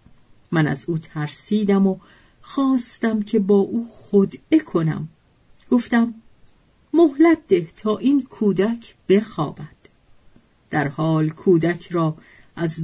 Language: Persian